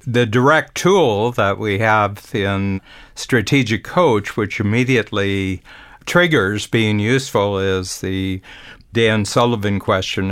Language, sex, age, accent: English, male, 60-79, American